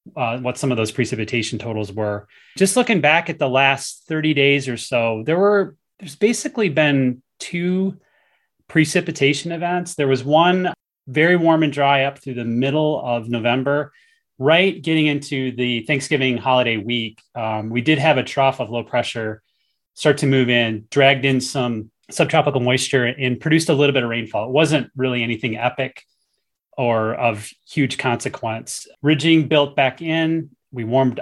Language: English